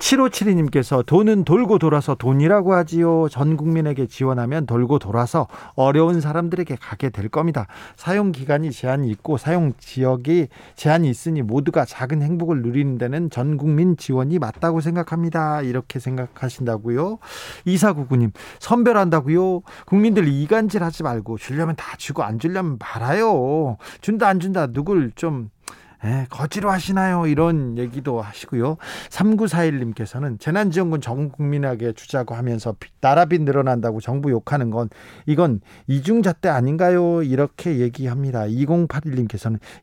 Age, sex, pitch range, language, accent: 40-59, male, 125-170 Hz, Korean, native